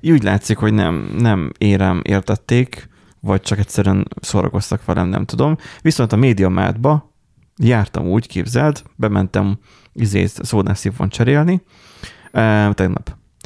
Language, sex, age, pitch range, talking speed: Hungarian, male, 30-49, 95-115 Hz, 105 wpm